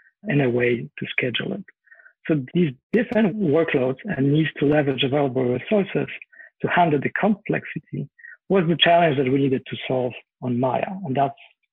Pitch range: 140-175 Hz